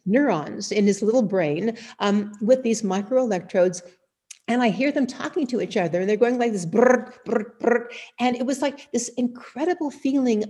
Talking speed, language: 170 wpm, English